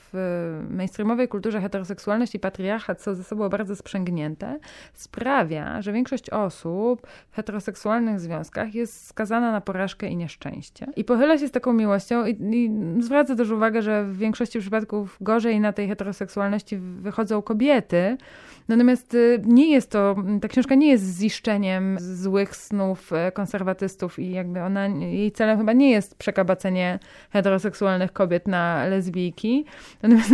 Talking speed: 140 wpm